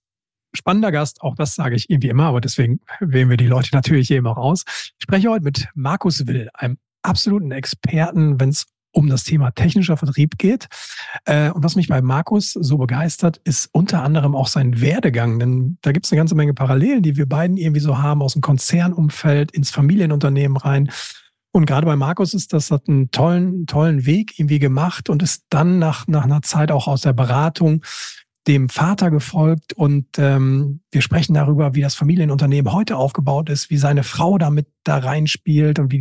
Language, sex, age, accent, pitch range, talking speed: German, male, 40-59, German, 135-165 Hz, 190 wpm